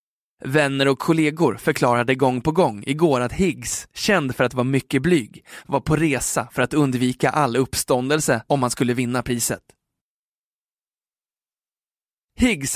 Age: 20-39